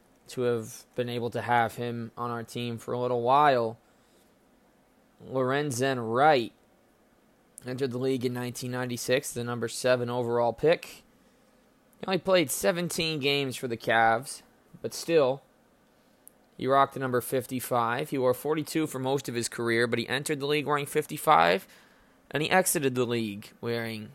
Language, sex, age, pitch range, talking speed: English, male, 20-39, 115-130 Hz, 155 wpm